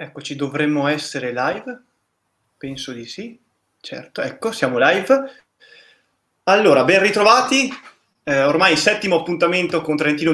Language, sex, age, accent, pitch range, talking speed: Italian, male, 20-39, native, 145-195 Hz, 120 wpm